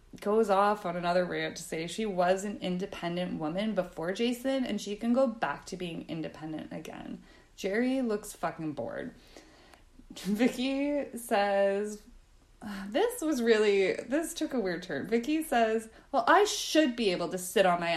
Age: 20-39